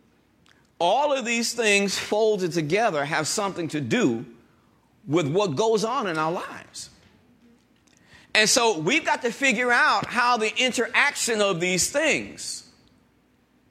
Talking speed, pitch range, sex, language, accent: 130 wpm, 190-245 Hz, male, English, American